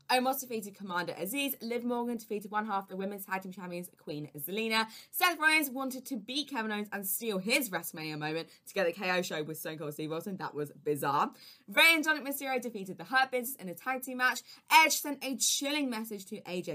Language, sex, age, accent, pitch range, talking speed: English, female, 20-39, British, 185-260 Hz, 215 wpm